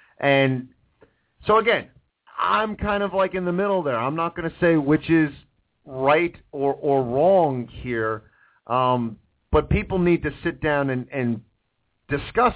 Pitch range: 130-190 Hz